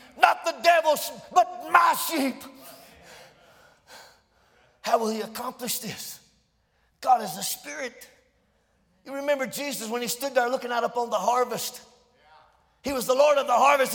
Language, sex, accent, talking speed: English, male, American, 145 wpm